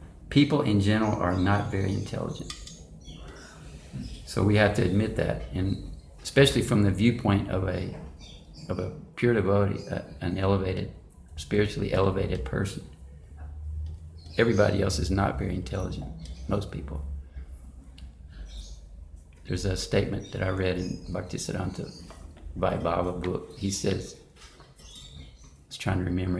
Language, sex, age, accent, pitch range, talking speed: English, male, 50-69, American, 75-105 Hz, 125 wpm